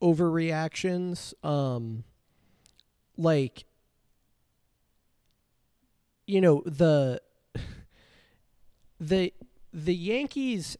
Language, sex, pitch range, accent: English, male, 125-160 Hz, American